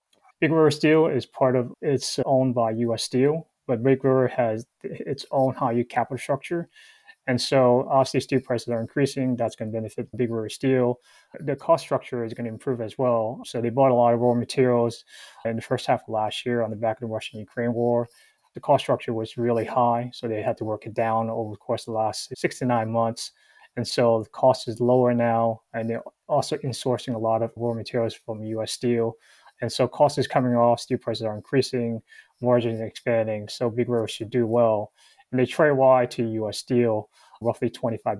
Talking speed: 215 wpm